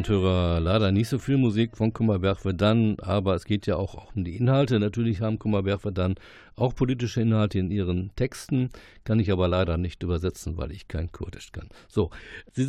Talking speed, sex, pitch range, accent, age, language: 190 wpm, male, 95-120 Hz, German, 50-69, German